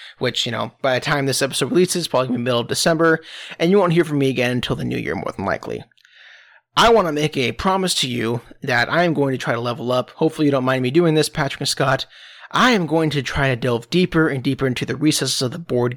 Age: 30-49